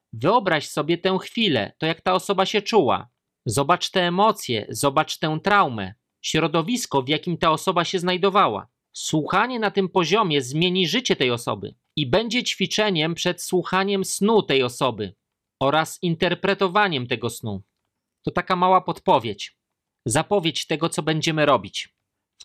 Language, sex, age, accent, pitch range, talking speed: Polish, male, 40-59, native, 140-195 Hz, 140 wpm